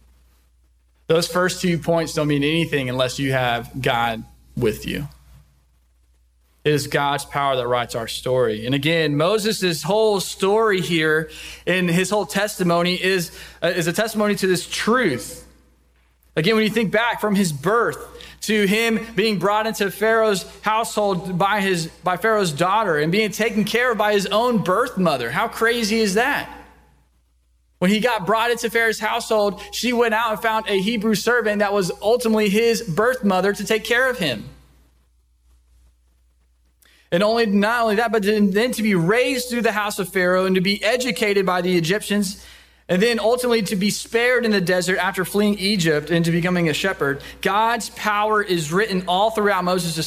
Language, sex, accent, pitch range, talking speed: English, male, American, 145-215 Hz, 170 wpm